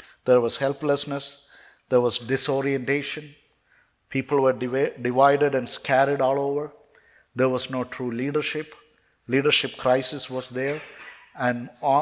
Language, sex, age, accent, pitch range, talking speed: English, male, 50-69, Indian, 115-130 Hz, 115 wpm